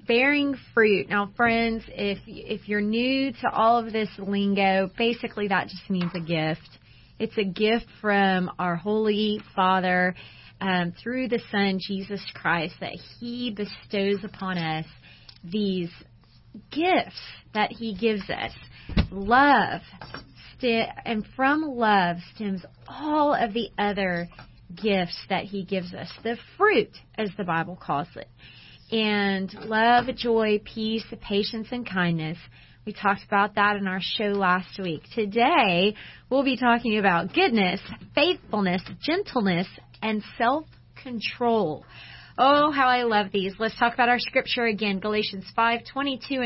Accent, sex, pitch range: American, female, 190-235 Hz